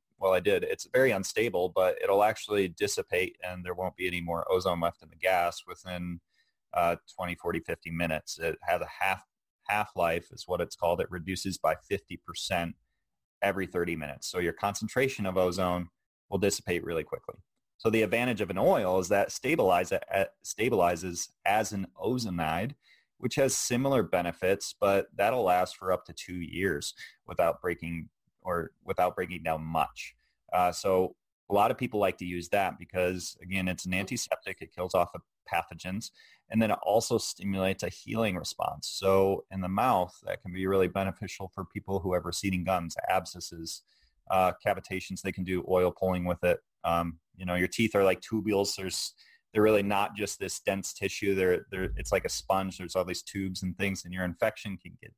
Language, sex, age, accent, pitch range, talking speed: English, male, 30-49, American, 90-100 Hz, 185 wpm